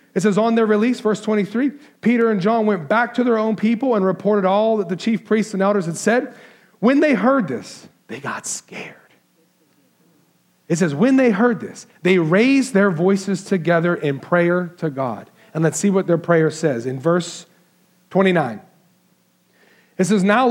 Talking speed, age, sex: 180 wpm, 40-59, male